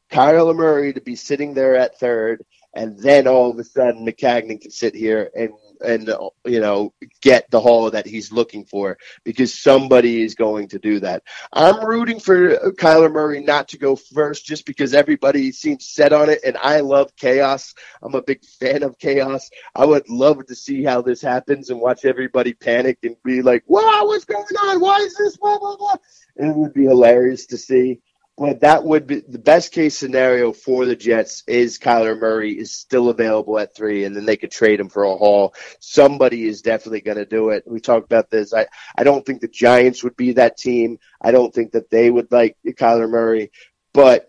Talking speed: 205 wpm